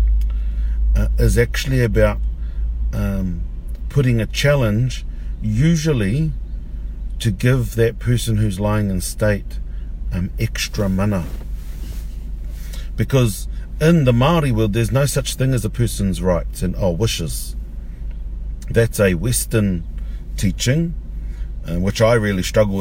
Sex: male